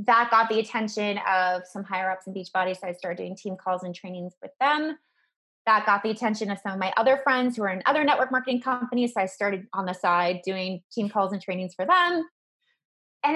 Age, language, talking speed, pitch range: 20-39, English, 225 wpm, 190-245 Hz